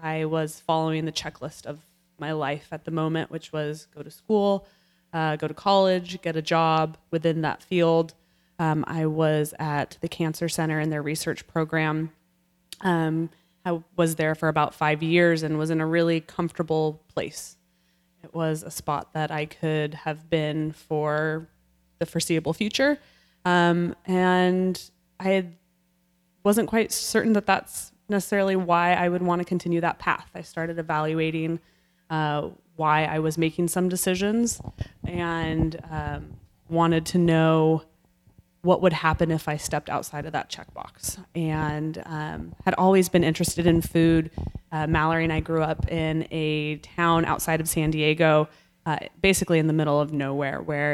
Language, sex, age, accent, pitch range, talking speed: English, female, 20-39, American, 155-175 Hz, 160 wpm